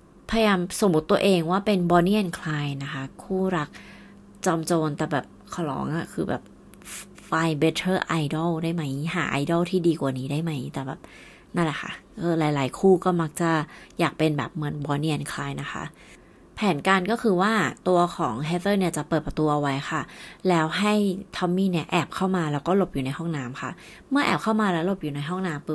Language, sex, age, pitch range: Thai, female, 30-49, 150-185 Hz